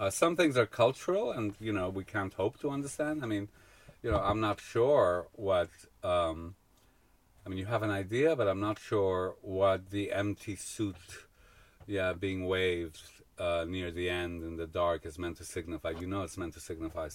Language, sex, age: English, male, 40-59